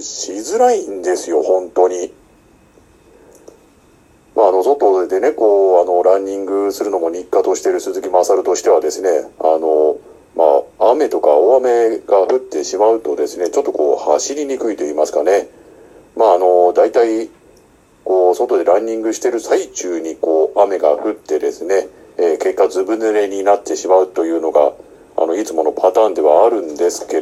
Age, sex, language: 50-69, male, Japanese